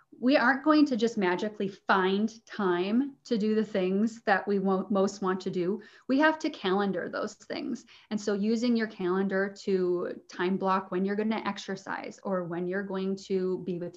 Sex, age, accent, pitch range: female, 20-39, American, 185-225 Hz